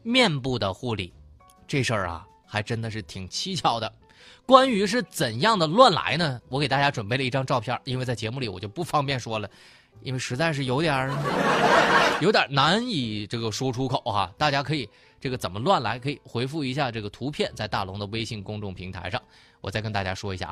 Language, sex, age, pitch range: Chinese, male, 20-39, 105-150 Hz